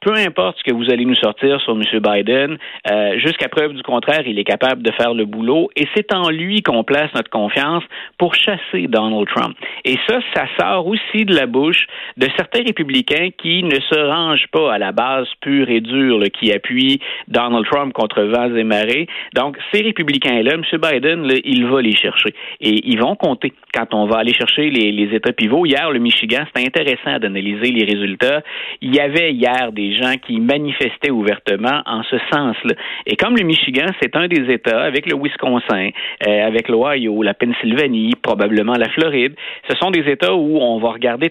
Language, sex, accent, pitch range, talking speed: French, male, Canadian, 115-165 Hz, 195 wpm